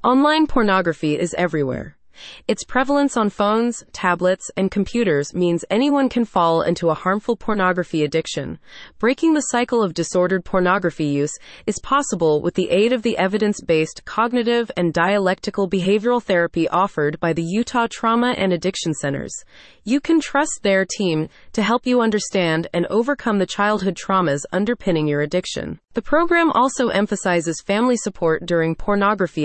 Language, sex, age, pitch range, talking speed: English, female, 30-49, 170-230 Hz, 150 wpm